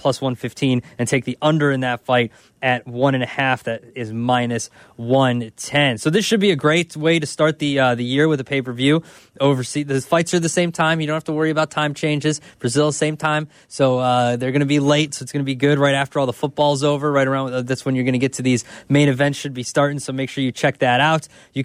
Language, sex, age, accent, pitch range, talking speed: English, male, 20-39, American, 125-150 Hz, 260 wpm